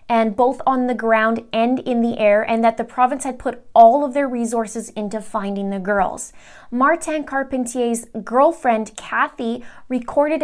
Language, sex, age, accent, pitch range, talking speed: English, female, 20-39, American, 220-260 Hz, 160 wpm